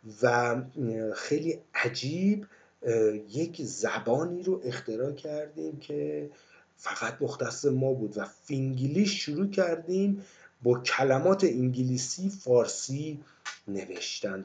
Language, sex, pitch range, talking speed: Persian, male, 115-165 Hz, 90 wpm